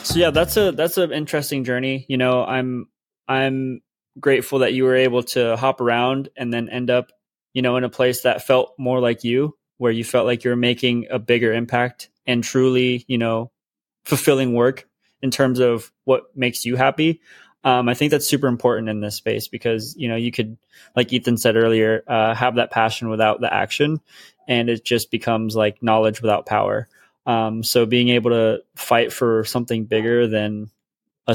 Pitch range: 110-125 Hz